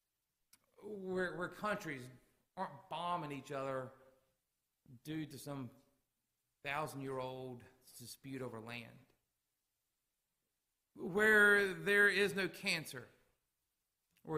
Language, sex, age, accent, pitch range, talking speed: English, male, 40-59, American, 120-160 Hz, 85 wpm